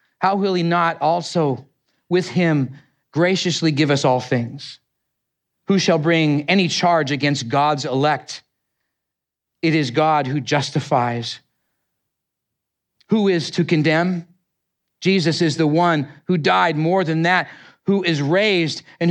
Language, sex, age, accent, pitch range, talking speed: English, male, 40-59, American, 140-170 Hz, 130 wpm